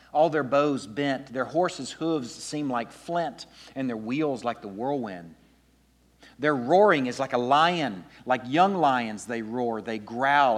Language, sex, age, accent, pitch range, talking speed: English, male, 40-59, American, 115-155 Hz, 165 wpm